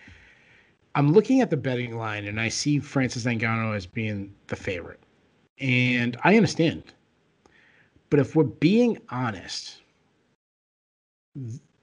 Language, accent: English, American